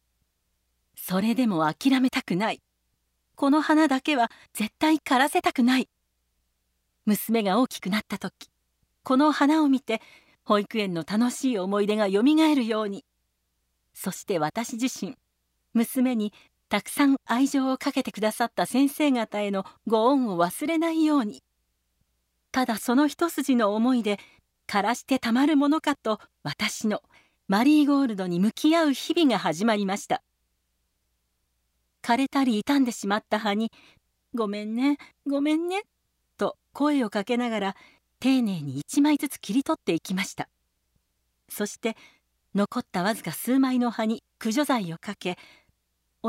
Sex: female